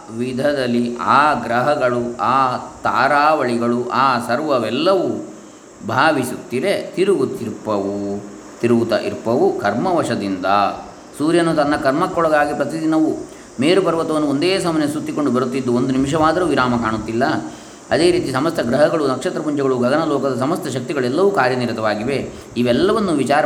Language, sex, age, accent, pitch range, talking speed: Kannada, male, 20-39, native, 120-140 Hz, 95 wpm